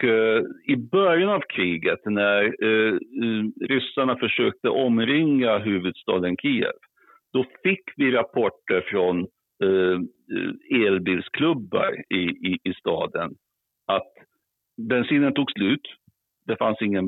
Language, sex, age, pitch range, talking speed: Swedish, male, 60-79, 105-170 Hz, 90 wpm